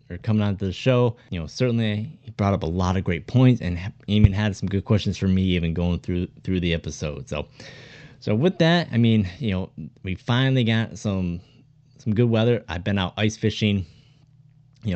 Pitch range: 95-120 Hz